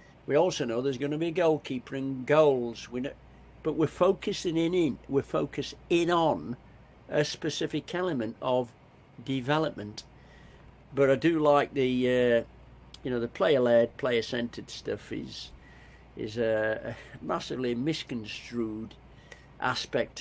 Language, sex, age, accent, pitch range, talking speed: English, male, 60-79, British, 115-140 Hz, 135 wpm